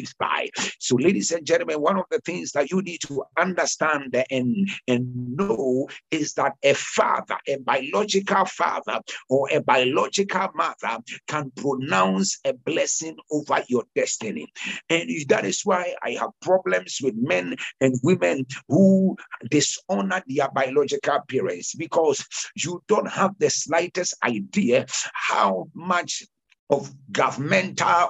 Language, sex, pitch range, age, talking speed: English, male, 145-220 Hz, 60-79, 130 wpm